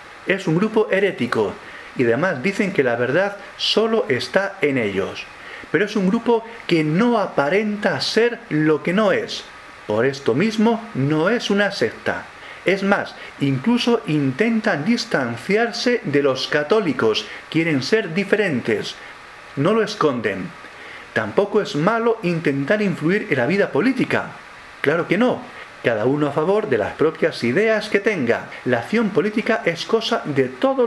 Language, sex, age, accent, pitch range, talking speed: Spanish, male, 40-59, Spanish, 145-220 Hz, 150 wpm